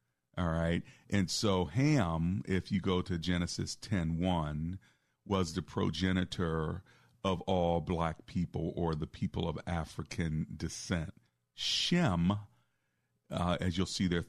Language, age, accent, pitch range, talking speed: English, 40-59, American, 80-95 Hz, 135 wpm